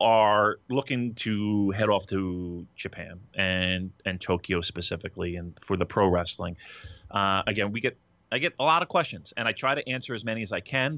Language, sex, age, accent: English, male, 30-49, American